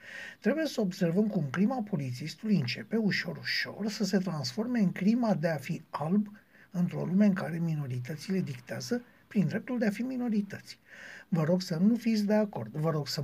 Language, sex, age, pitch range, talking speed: Romanian, male, 60-79, 165-215 Hz, 175 wpm